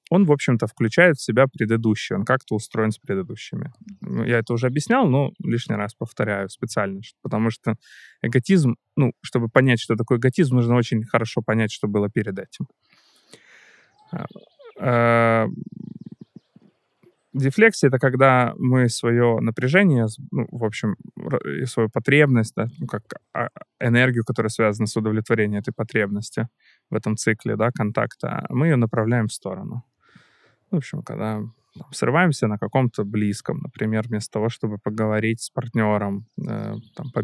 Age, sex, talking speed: 20-39, male, 145 wpm